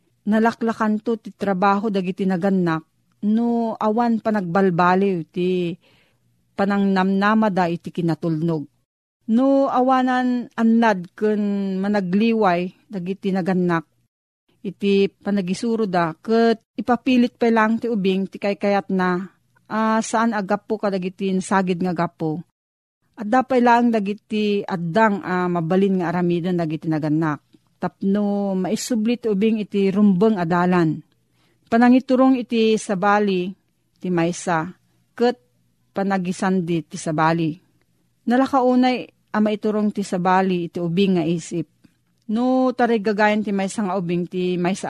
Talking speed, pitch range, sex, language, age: 110 wpm, 175-220 Hz, female, Filipino, 40-59